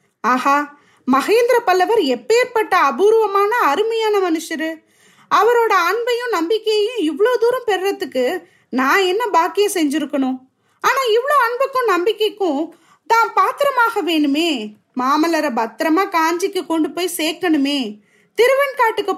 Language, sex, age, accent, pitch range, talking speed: Tamil, female, 20-39, native, 290-400 Hz, 45 wpm